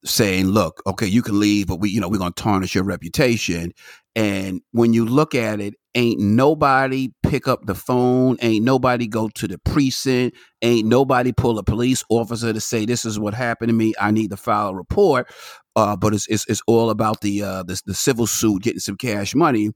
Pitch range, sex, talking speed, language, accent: 110-135 Hz, male, 215 wpm, English, American